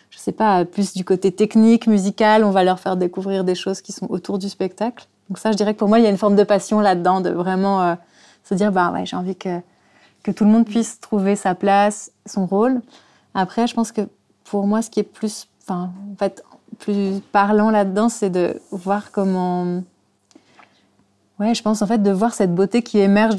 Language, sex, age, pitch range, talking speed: German, female, 30-49, 185-215 Hz, 220 wpm